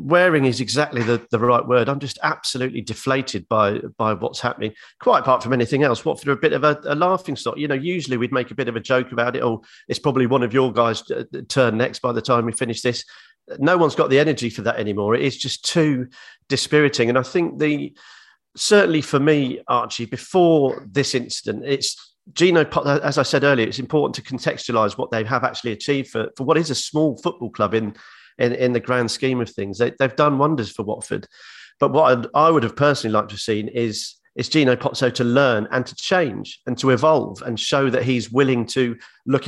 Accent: British